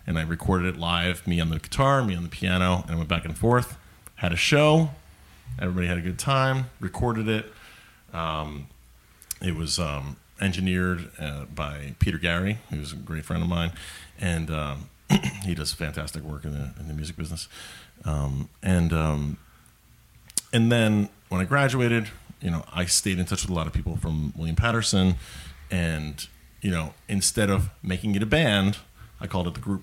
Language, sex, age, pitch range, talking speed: English, male, 30-49, 80-110 Hz, 185 wpm